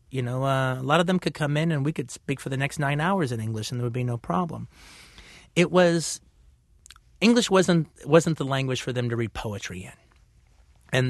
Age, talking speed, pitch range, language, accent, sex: 30-49, 225 wpm, 110-150 Hz, English, American, male